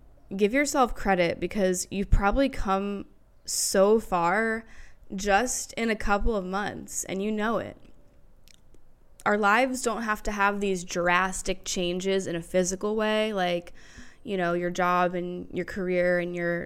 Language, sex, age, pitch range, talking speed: English, female, 10-29, 180-205 Hz, 150 wpm